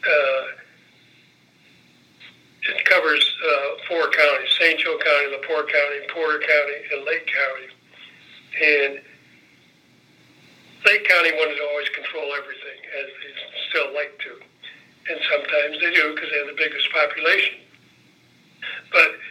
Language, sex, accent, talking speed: English, male, American, 125 wpm